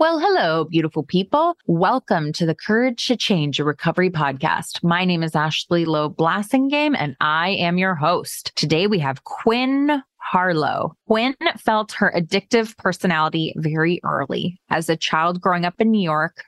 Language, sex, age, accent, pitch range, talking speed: English, female, 20-39, American, 165-205 Hz, 160 wpm